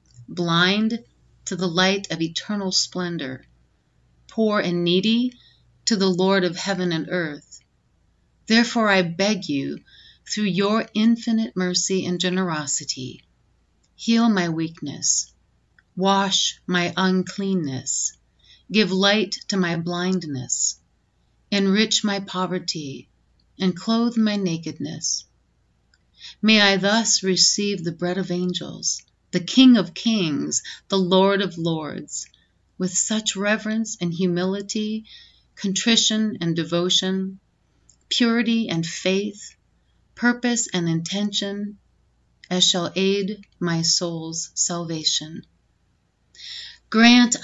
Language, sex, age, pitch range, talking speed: English, female, 40-59, 175-210 Hz, 105 wpm